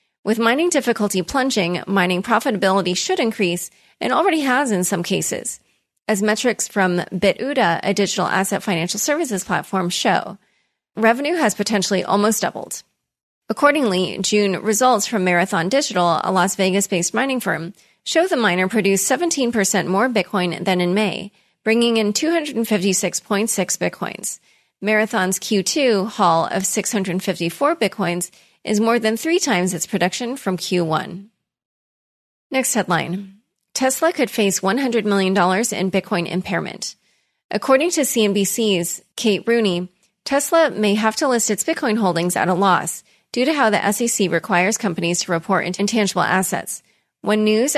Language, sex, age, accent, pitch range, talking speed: English, female, 30-49, American, 185-230 Hz, 135 wpm